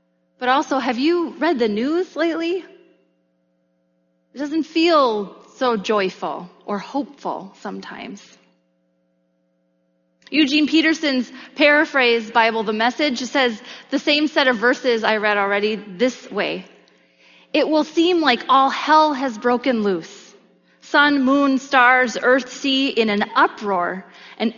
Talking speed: 125 wpm